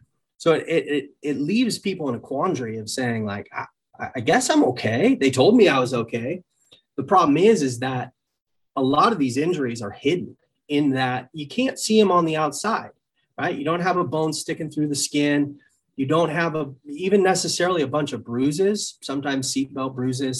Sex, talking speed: male, 195 wpm